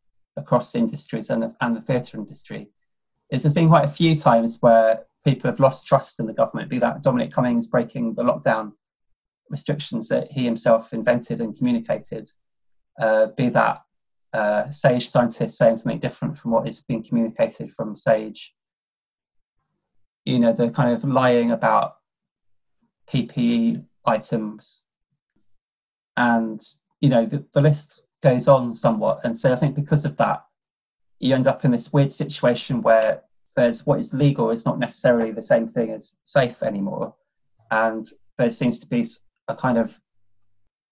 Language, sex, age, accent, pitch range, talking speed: English, male, 20-39, British, 115-145 Hz, 155 wpm